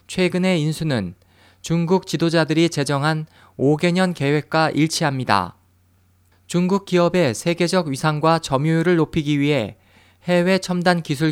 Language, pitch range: Korean, 105-175 Hz